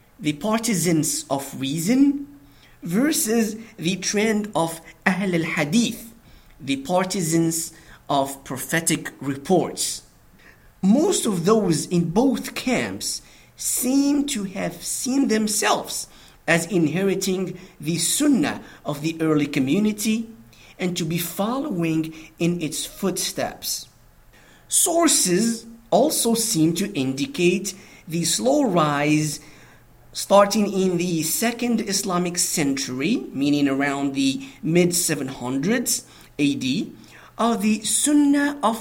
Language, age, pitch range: English, 50-69, 155-225 Hz